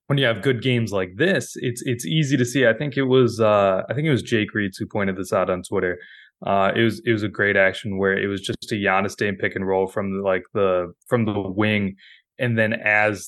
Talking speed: 260 wpm